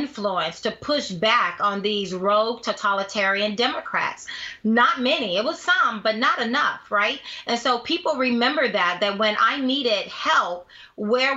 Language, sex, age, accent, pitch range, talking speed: English, female, 30-49, American, 200-240 Hz, 155 wpm